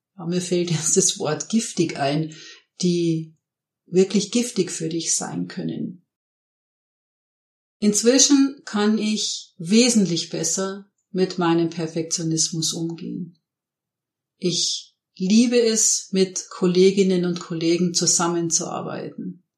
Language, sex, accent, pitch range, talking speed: German, female, German, 170-200 Hz, 95 wpm